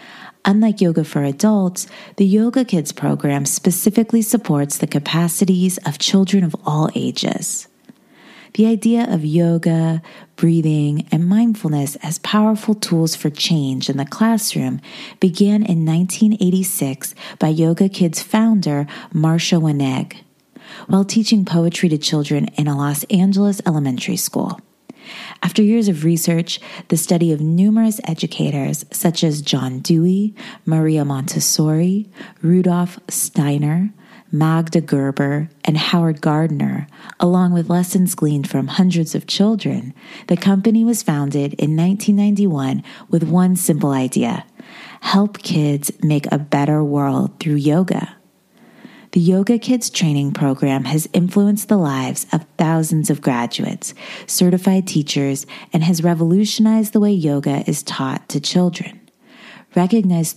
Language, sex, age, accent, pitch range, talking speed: English, female, 30-49, American, 155-205 Hz, 125 wpm